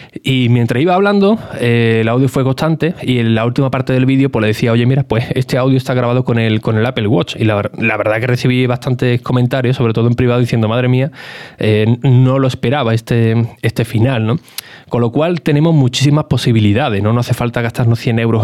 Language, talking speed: Spanish, 225 wpm